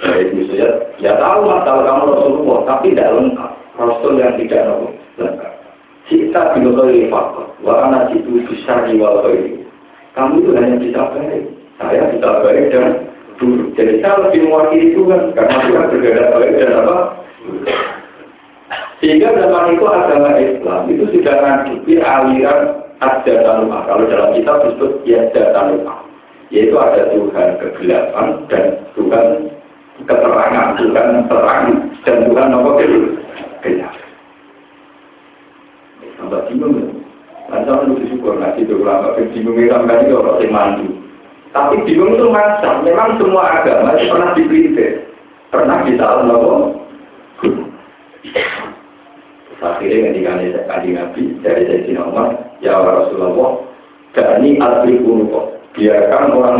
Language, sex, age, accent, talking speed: Indonesian, male, 50-69, native, 85 wpm